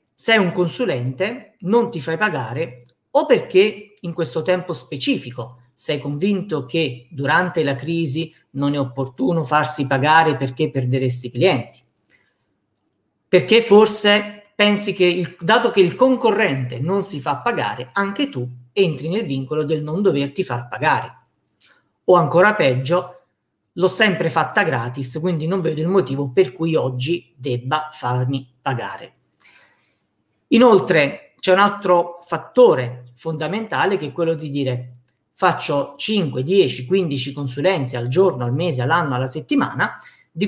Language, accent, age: Italian, native, 50-69